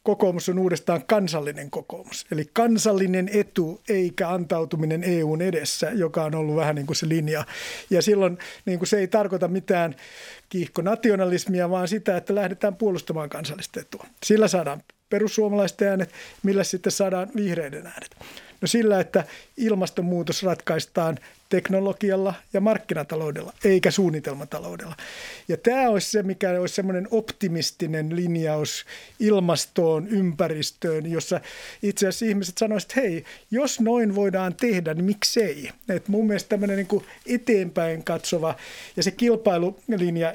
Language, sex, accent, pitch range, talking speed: Finnish, male, native, 165-205 Hz, 130 wpm